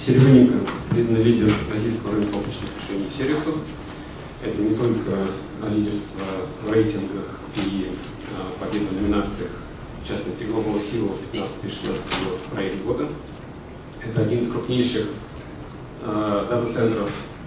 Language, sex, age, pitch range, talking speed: Russian, male, 30-49, 110-135 Hz, 115 wpm